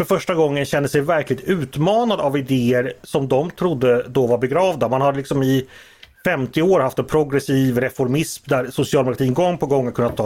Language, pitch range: Swedish, 125-160 Hz